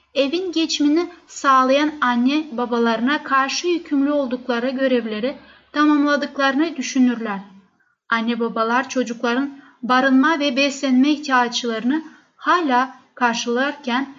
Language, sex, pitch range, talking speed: Turkish, female, 240-285 Hz, 85 wpm